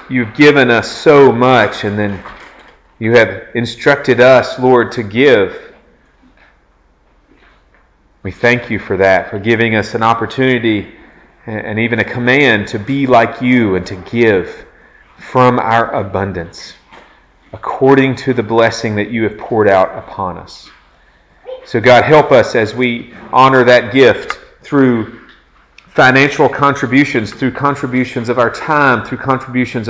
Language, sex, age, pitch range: English, male, 40-59, 105-130 Hz